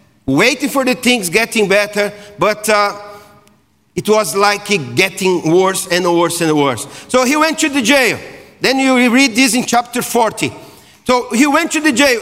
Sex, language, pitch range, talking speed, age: male, English, 185-255 Hz, 180 wpm, 40-59